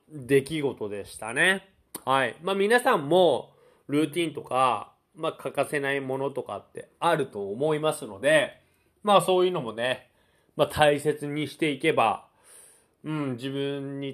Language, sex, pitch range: Japanese, male, 140-200 Hz